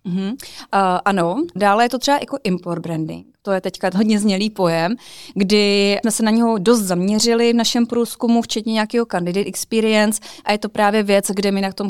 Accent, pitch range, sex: native, 180-220 Hz, female